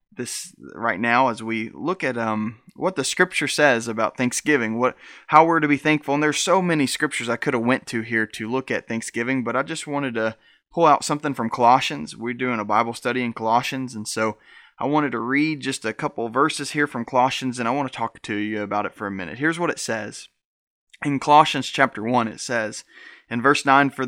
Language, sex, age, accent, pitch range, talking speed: English, male, 20-39, American, 120-155 Hz, 225 wpm